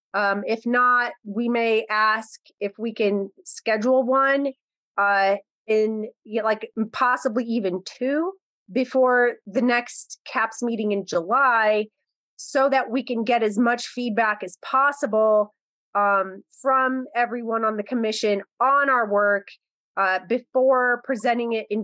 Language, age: English, 30-49